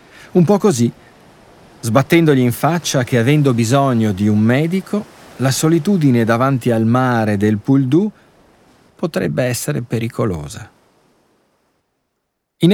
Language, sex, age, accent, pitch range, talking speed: Italian, male, 40-59, native, 100-135 Hz, 110 wpm